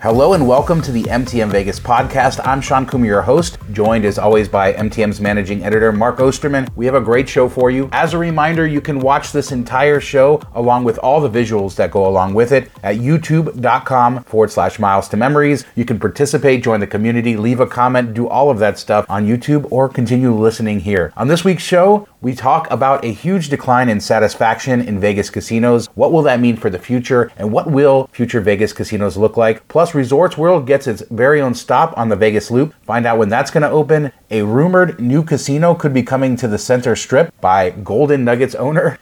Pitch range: 110-145 Hz